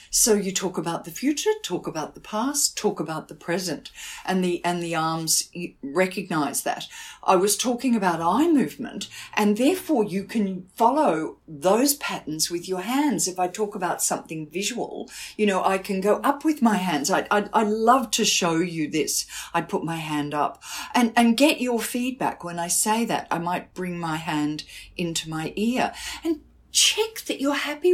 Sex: female